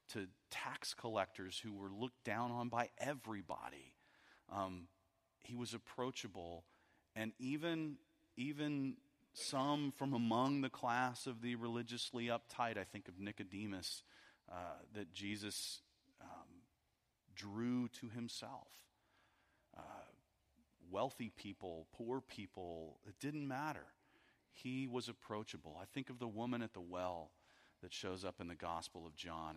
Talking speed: 130 wpm